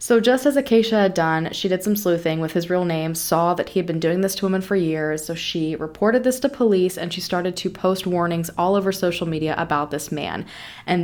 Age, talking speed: 20-39, 245 wpm